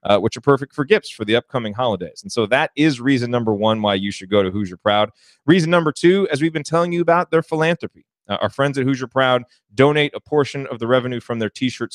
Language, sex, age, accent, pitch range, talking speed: English, male, 30-49, American, 110-145 Hz, 250 wpm